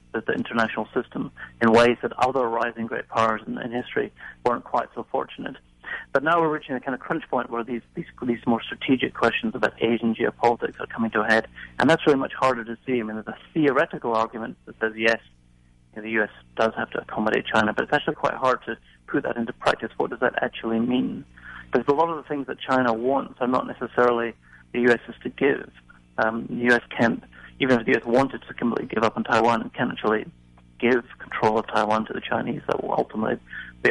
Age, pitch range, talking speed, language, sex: 30-49, 110-125 Hz, 225 wpm, English, male